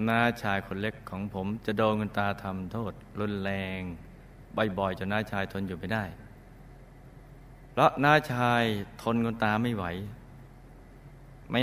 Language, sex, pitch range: Thai, male, 100-125 Hz